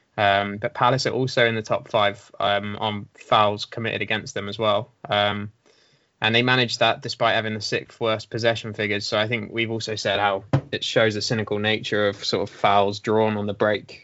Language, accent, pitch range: English, British, 110-125 Hz